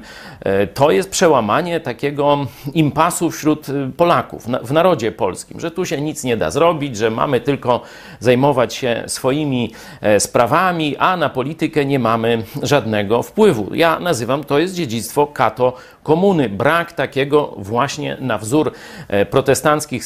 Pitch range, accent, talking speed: 130-170 Hz, native, 130 wpm